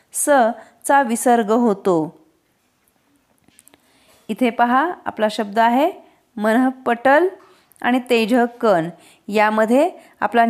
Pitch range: 230-275 Hz